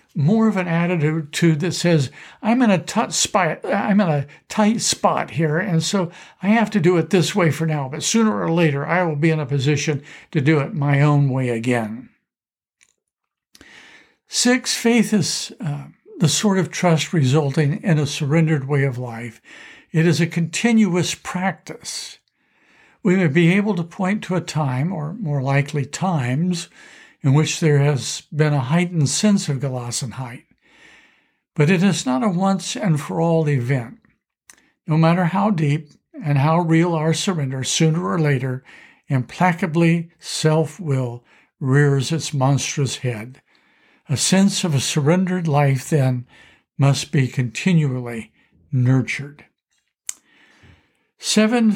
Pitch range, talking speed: 145-185 Hz, 145 wpm